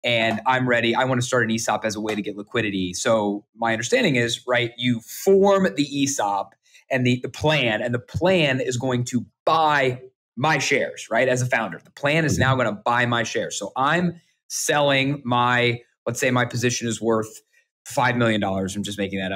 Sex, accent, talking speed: male, American, 210 wpm